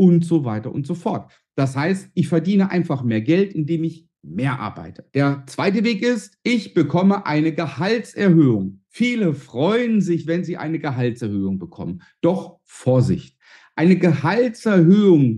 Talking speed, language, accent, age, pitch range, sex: 145 wpm, German, German, 50-69, 145-195 Hz, male